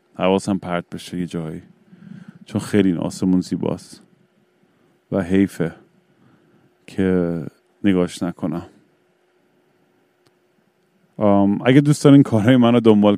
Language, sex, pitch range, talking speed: Persian, male, 90-110 Hz, 90 wpm